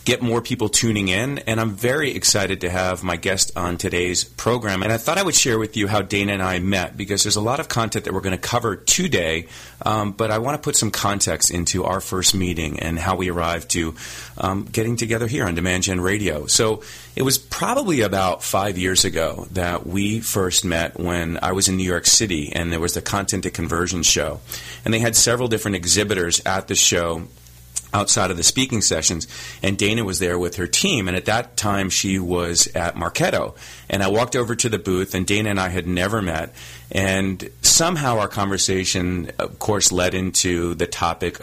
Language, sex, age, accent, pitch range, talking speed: English, male, 30-49, American, 85-105 Hz, 210 wpm